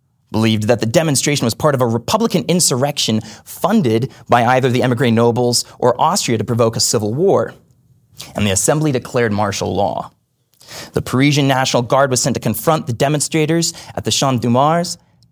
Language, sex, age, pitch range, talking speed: English, male, 20-39, 115-145 Hz, 165 wpm